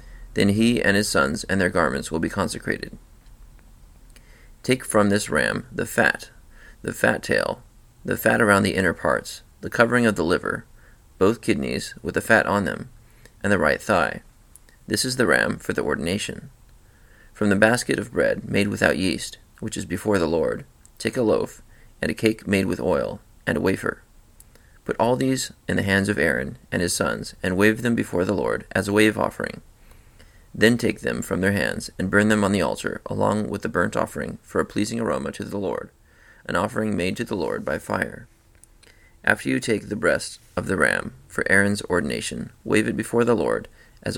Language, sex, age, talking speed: English, male, 30-49, 195 wpm